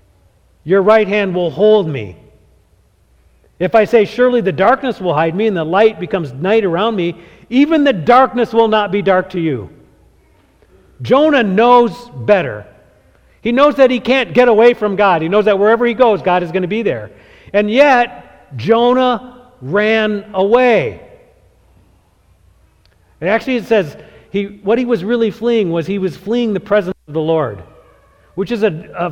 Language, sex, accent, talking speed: English, male, American, 170 wpm